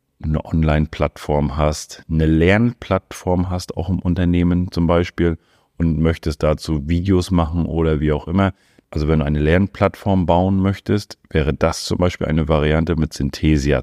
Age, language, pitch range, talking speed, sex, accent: 40-59, German, 75-90 Hz, 150 wpm, male, German